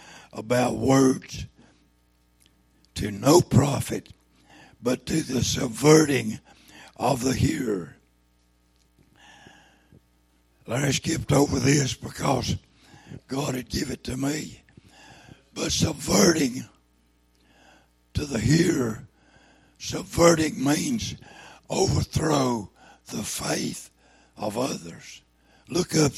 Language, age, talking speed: English, 60-79, 85 wpm